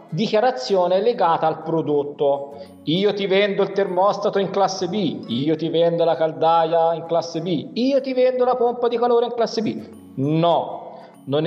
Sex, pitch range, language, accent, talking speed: male, 150-200 Hz, Italian, native, 165 wpm